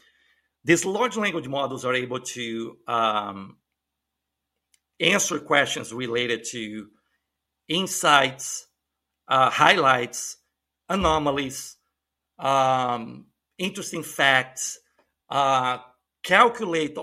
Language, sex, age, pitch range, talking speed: English, male, 50-69, 120-165 Hz, 75 wpm